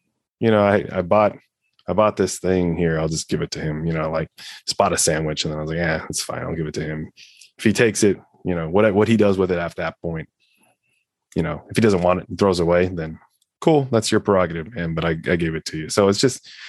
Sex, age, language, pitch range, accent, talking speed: male, 20-39, English, 85-100 Hz, American, 275 wpm